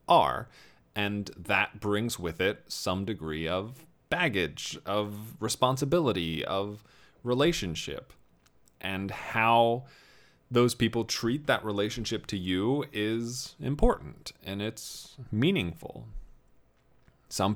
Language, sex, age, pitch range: English, male, 30-49, 100-125 Hz